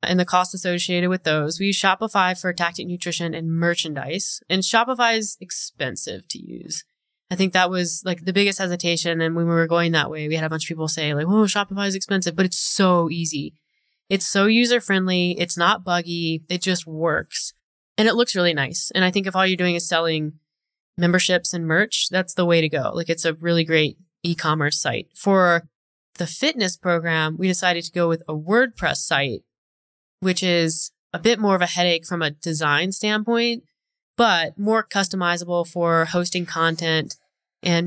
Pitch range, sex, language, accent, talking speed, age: 165-190 Hz, female, English, American, 190 wpm, 20-39